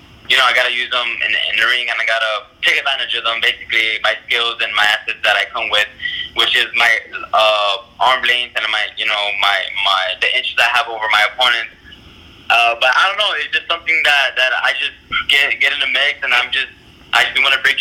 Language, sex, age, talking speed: English, male, 20-39, 235 wpm